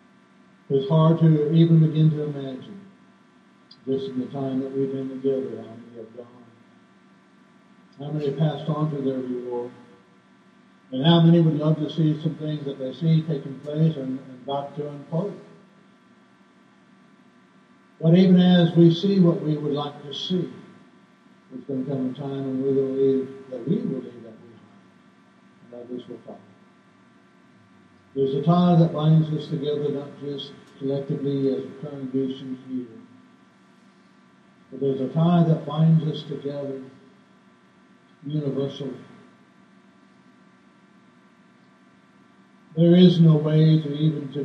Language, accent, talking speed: English, American, 145 wpm